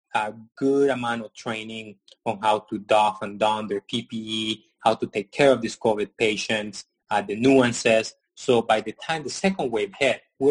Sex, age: male, 20-39